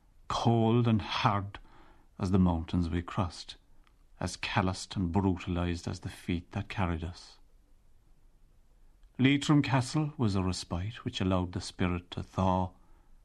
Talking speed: 130 wpm